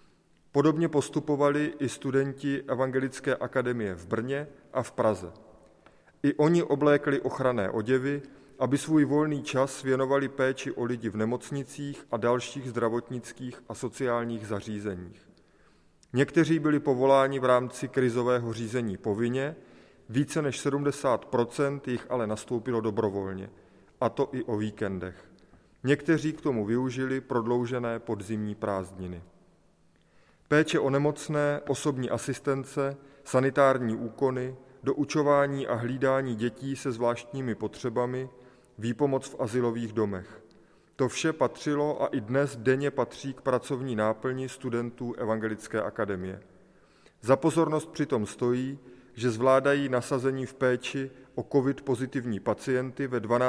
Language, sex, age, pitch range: Czech, male, 30-49, 115-140 Hz